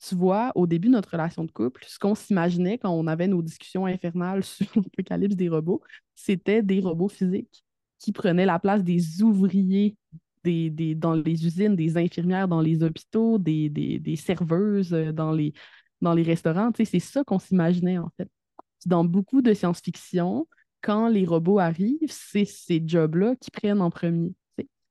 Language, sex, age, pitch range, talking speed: French, female, 20-39, 165-200 Hz, 165 wpm